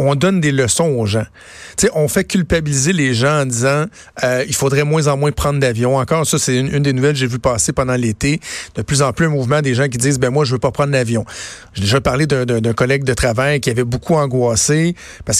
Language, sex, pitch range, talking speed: French, male, 130-155 Hz, 255 wpm